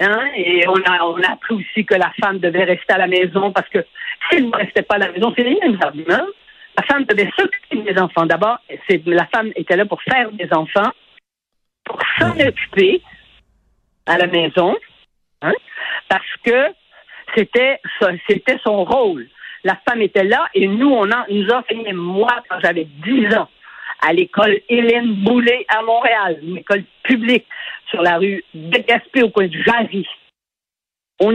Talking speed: 180 wpm